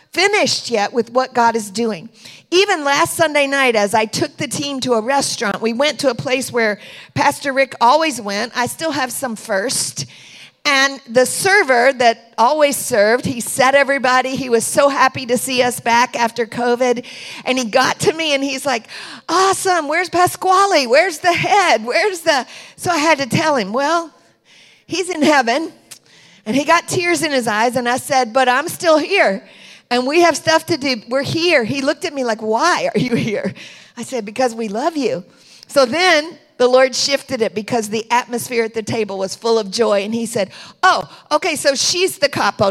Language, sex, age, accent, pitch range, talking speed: English, female, 50-69, American, 235-320 Hz, 200 wpm